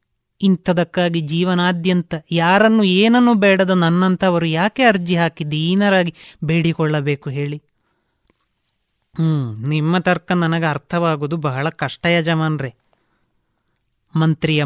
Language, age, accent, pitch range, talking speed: Kannada, 20-39, native, 150-190 Hz, 85 wpm